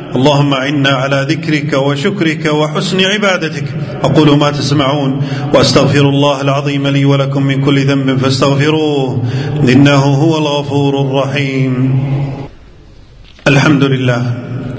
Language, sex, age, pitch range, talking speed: Arabic, male, 40-59, 140-160 Hz, 100 wpm